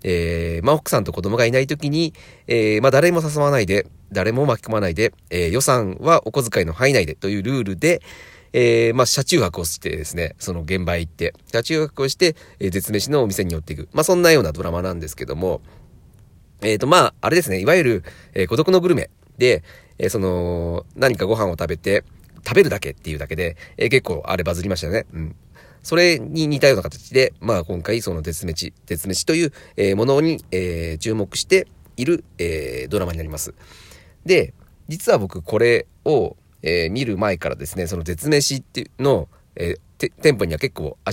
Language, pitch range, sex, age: Japanese, 85-130 Hz, male, 40-59